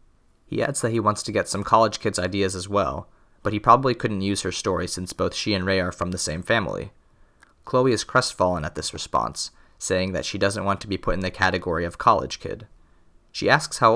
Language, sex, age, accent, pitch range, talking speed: English, male, 30-49, American, 90-115 Hz, 230 wpm